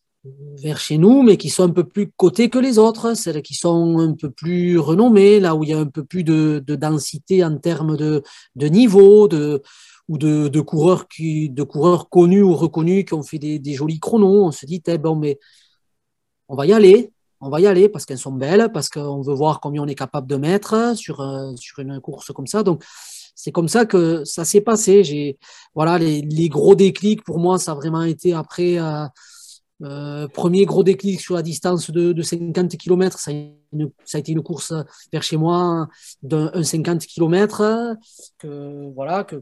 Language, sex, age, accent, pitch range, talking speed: French, male, 30-49, French, 145-185 Hz, 195 wpm